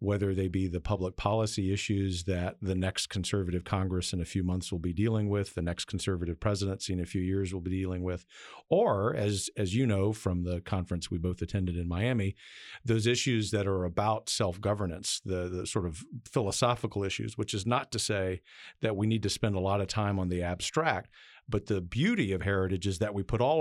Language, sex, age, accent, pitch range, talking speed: English, male, 50-69, American, 95-115 Hz, 210 wpm